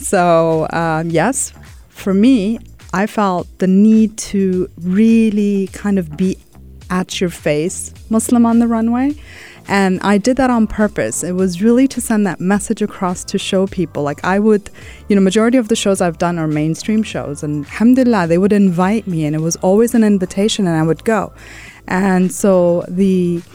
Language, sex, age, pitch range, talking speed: English, female, 30-49, 165-210 Hz, 180 wpm